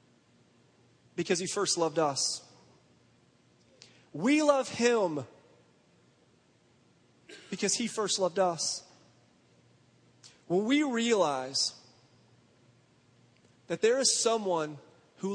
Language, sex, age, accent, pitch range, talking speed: English, male, 30-49, American, 170-225 Hz, 80 wpm